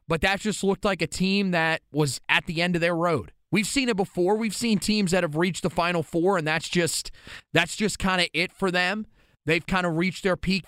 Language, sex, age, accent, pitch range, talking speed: English, male, 30-49, American, 150-190 Hz, 245 wpm